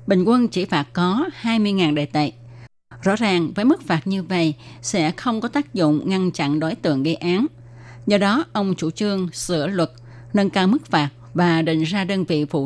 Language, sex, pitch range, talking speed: Vietnamese, female, 150-200 Hz, 205 wpm